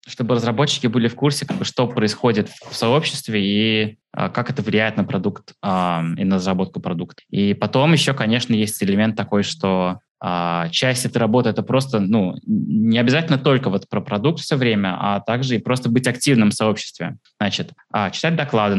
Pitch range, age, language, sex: 100-130 Hz, 20-39, Russian, male